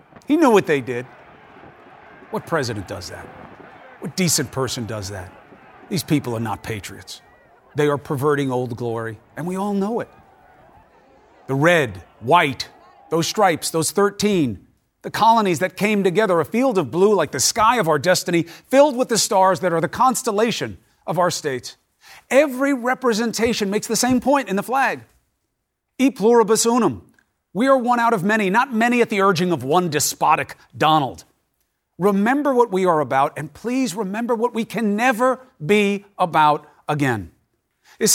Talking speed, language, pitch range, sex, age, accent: 165 wpm, English, 130-220 Hz, male, 40-59, American